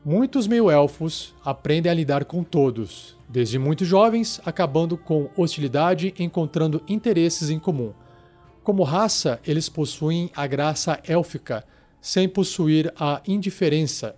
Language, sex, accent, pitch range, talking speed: Portuguese, male, Brazilian, 140-175 Hz, 125 wpm